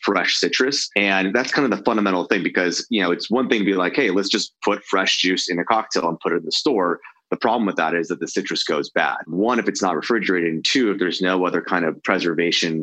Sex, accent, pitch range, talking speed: male, American, 90-105 Hz, 265 wpm